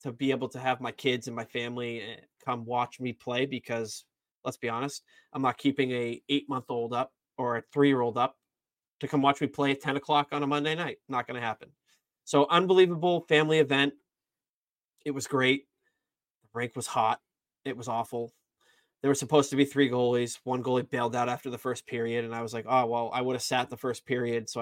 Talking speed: 220 wpm